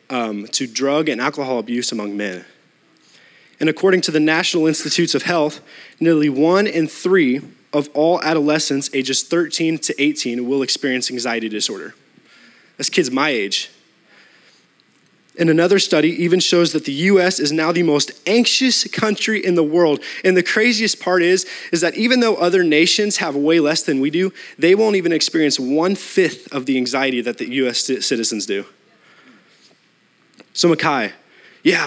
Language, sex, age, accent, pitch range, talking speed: English, male, 20-39, American, 150-205 Hz, 160 wpm